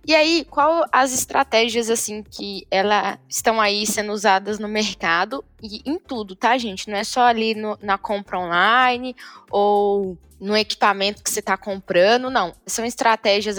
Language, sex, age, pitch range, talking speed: Portuguese, female, 10-29, 215-270 Hz, 165 wpm